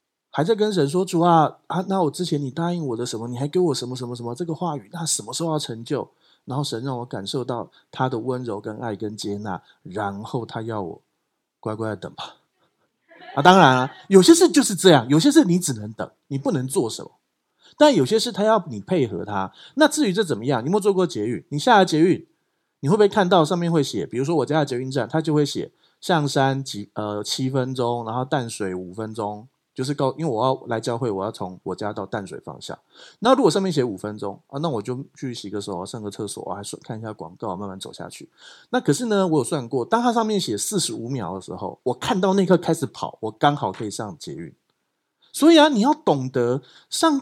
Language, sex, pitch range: Chinese, male, 115-185 Hz